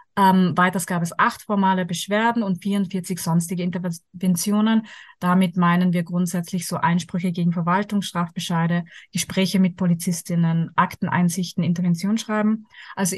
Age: 30-49